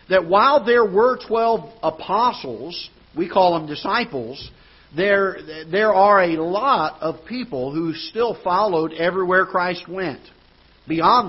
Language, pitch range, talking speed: English, 145-185 Hz, 130 wpm